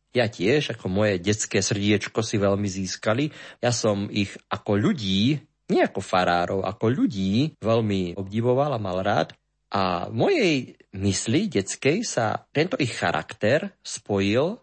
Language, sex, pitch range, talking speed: Slovak, male, 105-150 Hz, 140 wpm